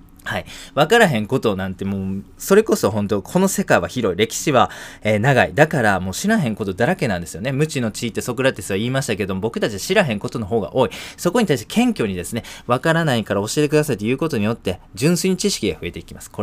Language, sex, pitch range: Japanese, male, 100-155 Hz